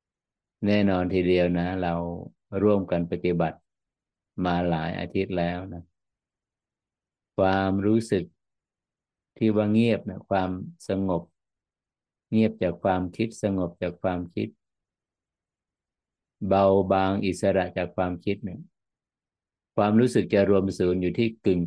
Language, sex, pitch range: Thai, male, 90-100 Hz